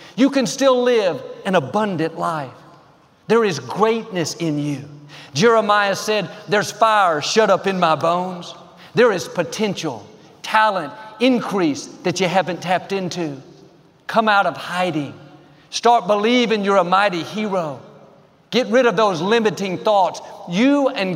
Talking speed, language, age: 140 wpm, English, 50-69